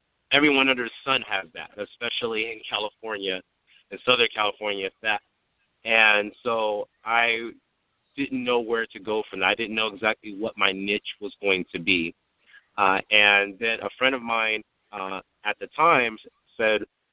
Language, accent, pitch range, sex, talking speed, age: English, American, 105-120 Hz, male, 160 wpm, 30-49